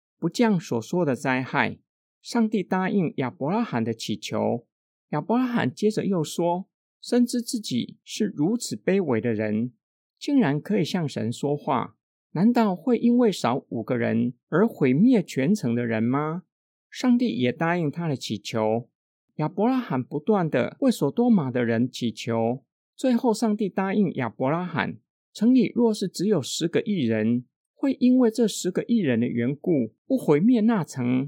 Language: Chinese